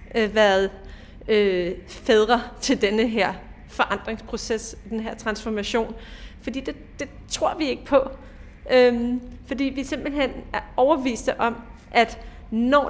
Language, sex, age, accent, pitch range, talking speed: Danish, female, 30-49, native, 220-265 Hz, 120 wpm